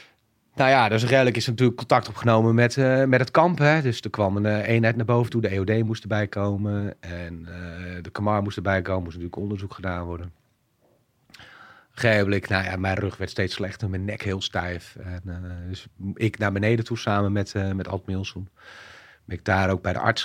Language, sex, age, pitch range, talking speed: Dutch, male, 40-59, 95-120 Hz, 210 wpm